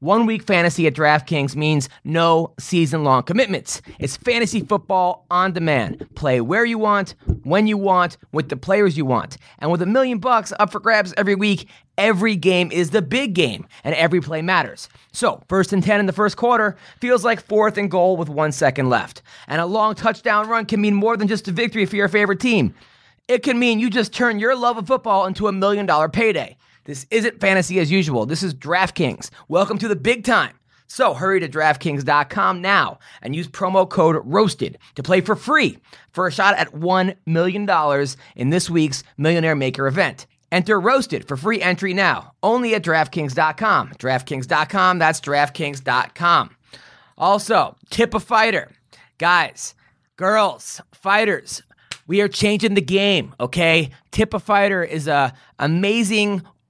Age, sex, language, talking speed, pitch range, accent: 20-39, male, English, 170 wpm, 155-215 Hz, American